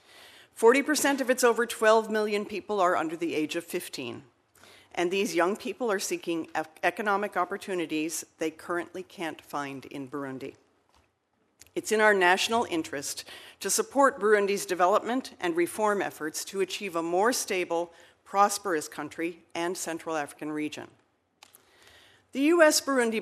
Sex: female